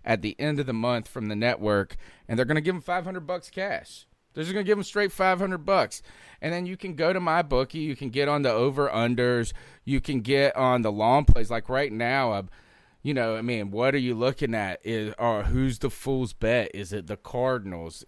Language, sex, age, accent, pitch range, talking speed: English, male, 30-49, American, 110-145 Hz, 240 wpm